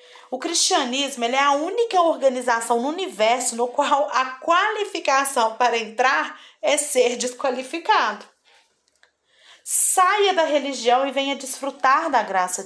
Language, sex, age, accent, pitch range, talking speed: Portuguese, female, 40-59, Brazilian, 235-300 Hz, 125 wpm